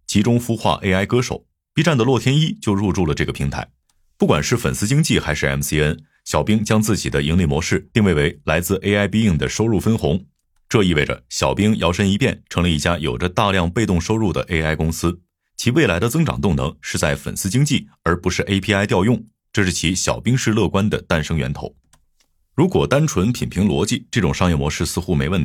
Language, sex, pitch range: Chinese, male, 75-110 Hz